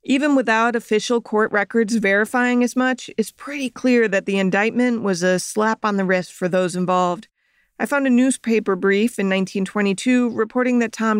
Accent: American